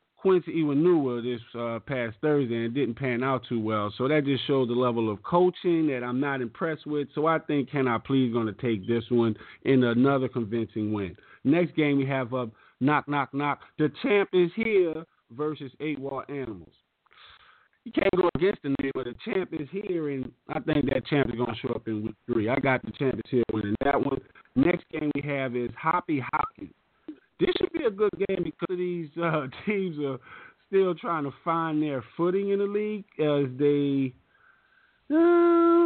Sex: male